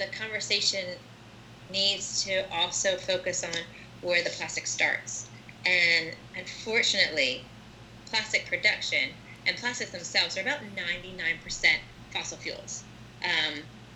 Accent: American